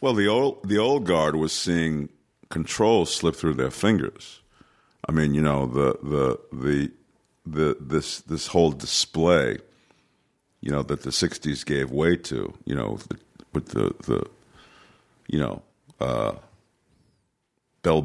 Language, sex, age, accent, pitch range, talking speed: English, male, 50-69, American, 70-80 Hz, 145 wpm